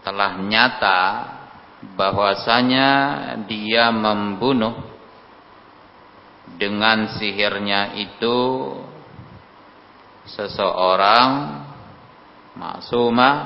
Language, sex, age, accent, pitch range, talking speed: Indonesian, male, 50-69, native, 95-115 Hz, 45 wpm